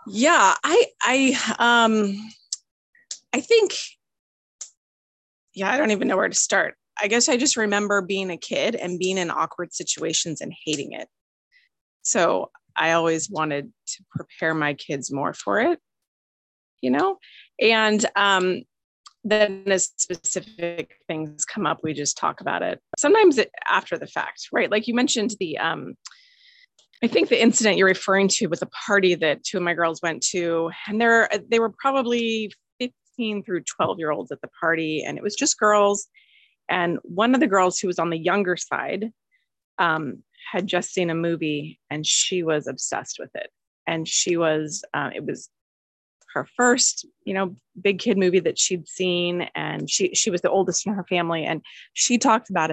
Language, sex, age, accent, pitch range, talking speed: English, female, 30-49, American, 165-230 Hz, 175 wpm